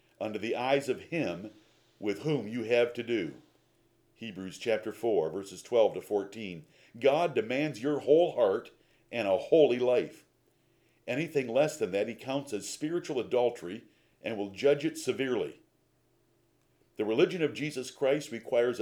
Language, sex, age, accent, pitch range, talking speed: English, male, 50-69, American, 110-145 Hz, 150 wpm